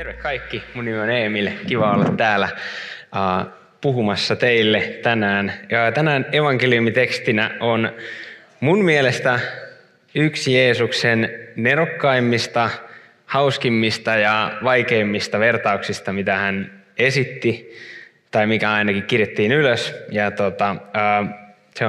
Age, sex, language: 20-39, male, Finnish